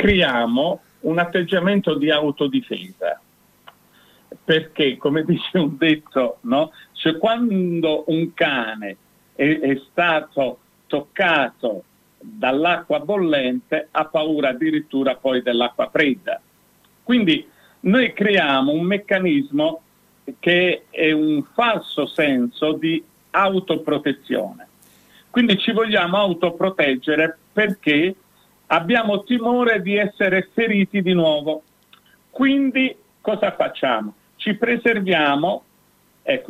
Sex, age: male, 50-69